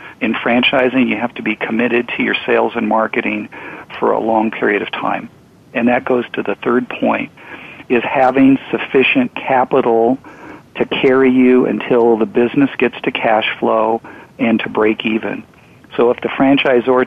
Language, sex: English, male